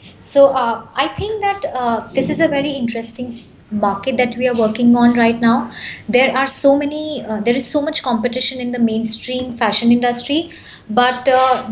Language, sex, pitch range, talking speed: English, male, 230-275 Hz, 185 wpm